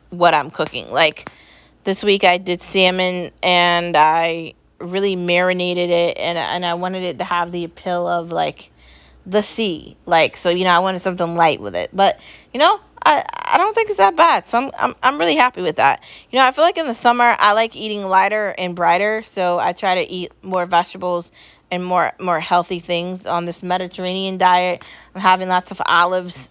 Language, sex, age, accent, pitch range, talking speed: English, female, 20-39, American, 175-225 Hz, 205 wpm